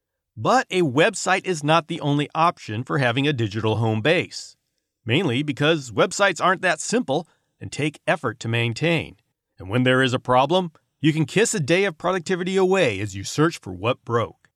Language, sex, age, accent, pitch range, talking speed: English, male, 40-59, American, 125-180 Hz, 185 wpm